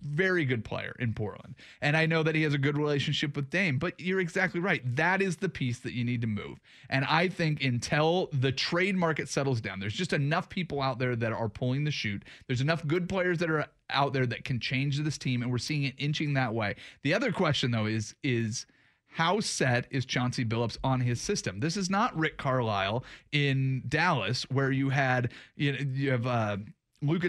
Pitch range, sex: 125-170 Hz, male